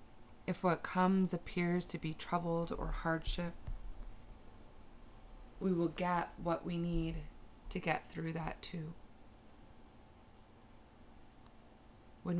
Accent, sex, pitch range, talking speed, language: American, female, 110-165 Hz, 100 wpm, English